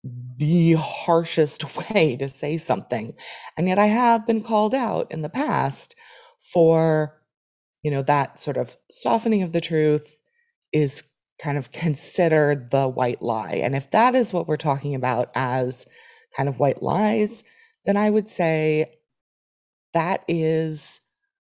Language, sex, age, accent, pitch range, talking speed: English, female, 30-49, American, 135-180 Hz, 145 wpm